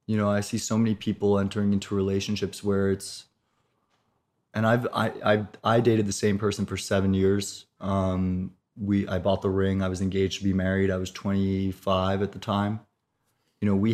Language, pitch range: English, 95-105 Hz